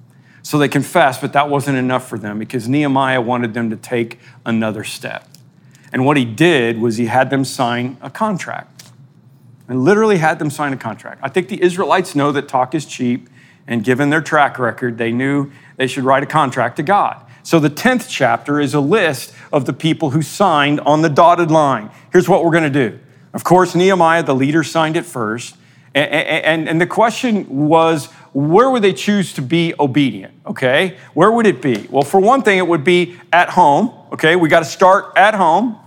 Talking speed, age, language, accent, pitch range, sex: 195 wpm, 50-69, English, American, 130-170 Hz, male